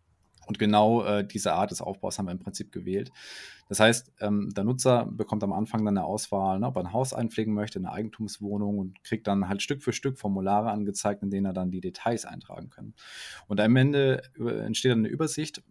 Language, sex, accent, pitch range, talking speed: German, male, German, 95-115 Hz, 210 wpm